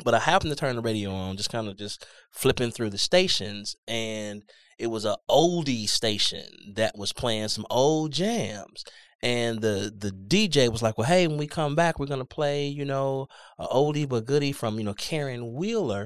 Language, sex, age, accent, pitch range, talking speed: English, male, 20-39, American, 105-150 Hz, 205 wpm